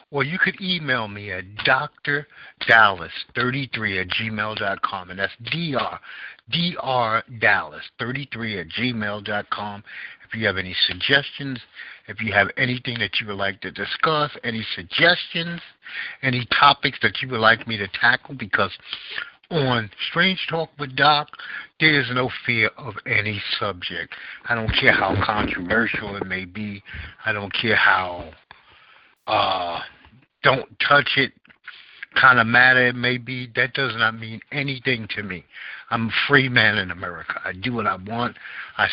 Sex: male